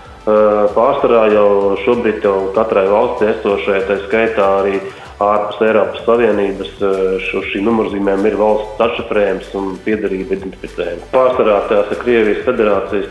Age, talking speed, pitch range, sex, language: 20-39, 120 wpm, 100-110 Hz, male, English